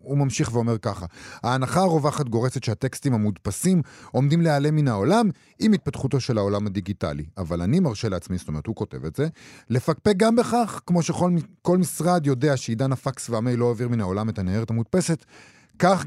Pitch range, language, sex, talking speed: 105-145 Hz, Hebrew, male, 170 wpm